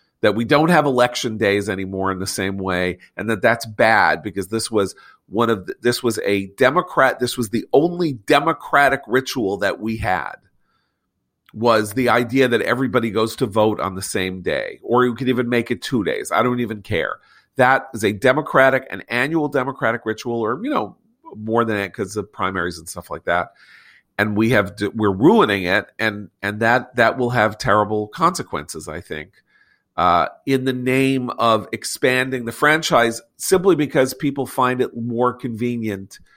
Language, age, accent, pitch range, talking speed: English, 40-59, American, 105-130 Hz, 180 wpm